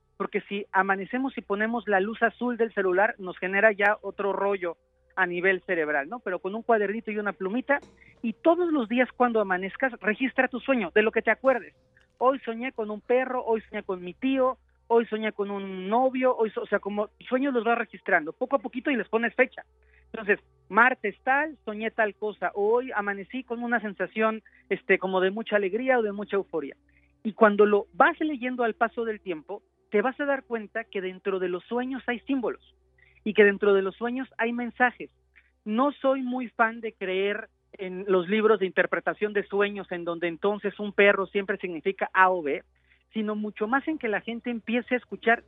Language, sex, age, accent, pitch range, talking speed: English, male, 40-59, Mexican, 195-245 Hz, 200 wpm